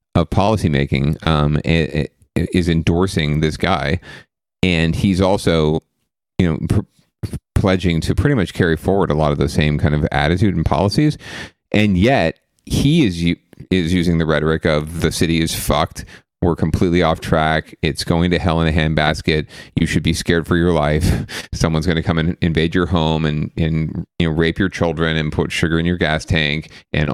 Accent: American